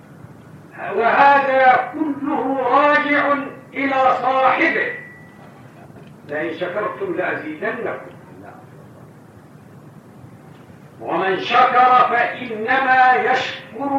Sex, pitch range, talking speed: male, 190-260 Hz, 50 wpm